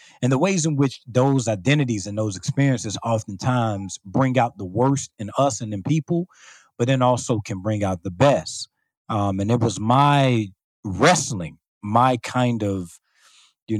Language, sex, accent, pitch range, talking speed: English, male, American, 100-125 Hz, 165 wpm